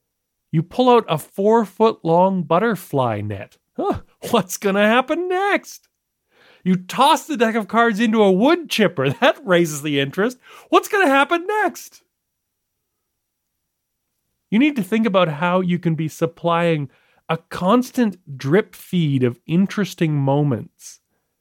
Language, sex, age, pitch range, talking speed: English, male, 40-59, 145-215 Hz, 140 wpm